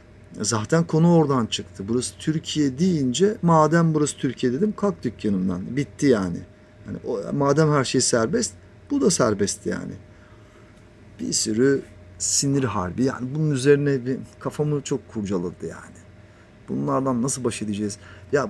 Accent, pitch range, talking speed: native, 100-140 Hz, 135 wpm